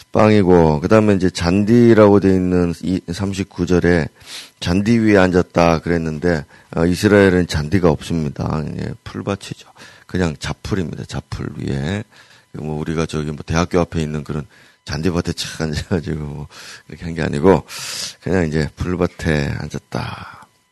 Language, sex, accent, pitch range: Korean, male, native, 75-95 Hz